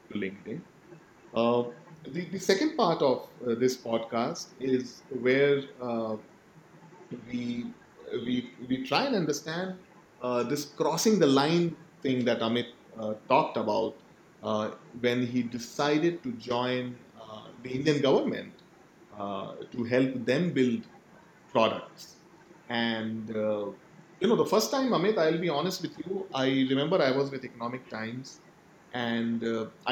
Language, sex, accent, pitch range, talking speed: English, male, Indian, 120-175 Hz, 135 wpm